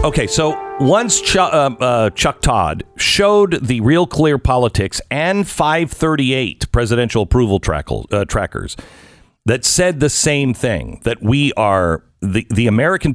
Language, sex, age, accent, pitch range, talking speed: English, male, 50-69, American, 110-150 Hz, 150 wpm